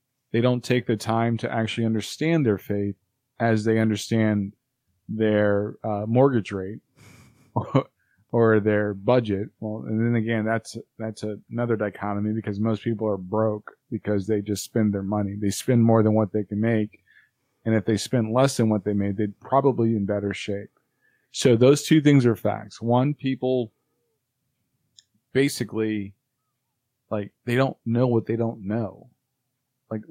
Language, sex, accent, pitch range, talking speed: English, male, American, 110-130 Hz, 160 wpm